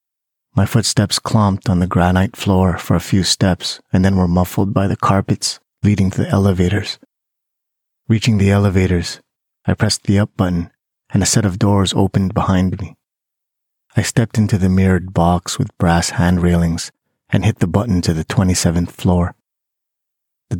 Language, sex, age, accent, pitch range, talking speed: English, male, 30-49, American, 90-100 Hz, 165 wpm